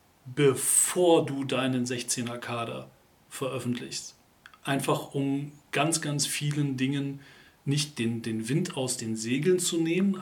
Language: German